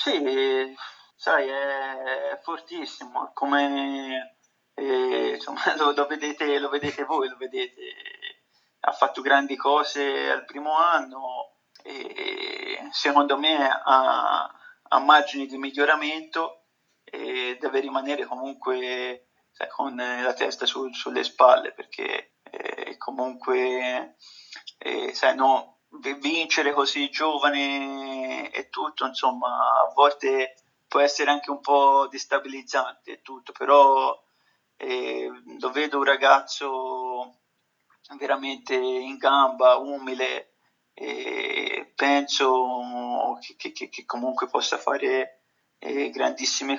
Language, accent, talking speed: Italian, native, 105 wpm